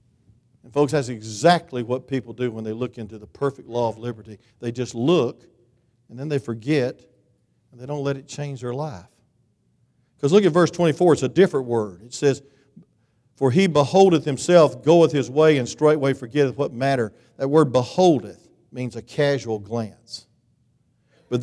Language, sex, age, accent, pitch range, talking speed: English, male, 50-69, American, 120-155 Hz, 170 wpm